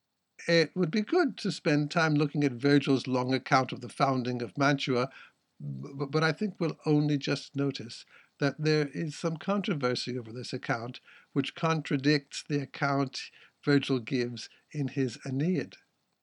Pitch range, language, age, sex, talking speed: 135-160 Hz, English, 60-79, male, 150 wpm